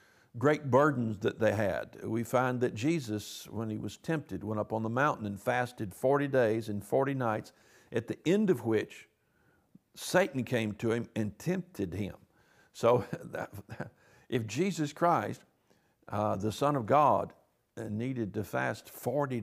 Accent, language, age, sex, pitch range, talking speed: American, English, 60-79, male, 110-140 Hz, 155 wpm